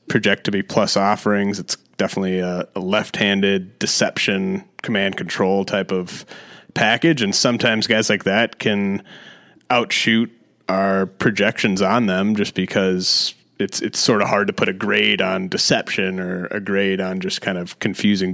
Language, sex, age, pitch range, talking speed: English, male, 30-49, 95-105 Hz, 155 wpm